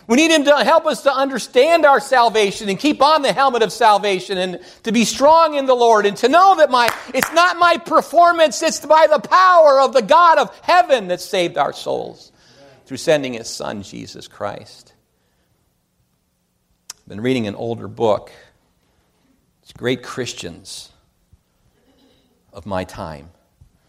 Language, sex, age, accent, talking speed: English, male, 50-69, American, 160 wpm